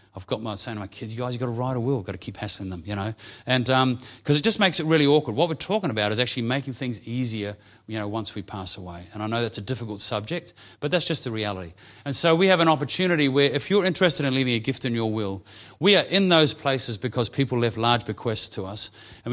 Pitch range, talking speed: 110-135 Hz, 275 wpm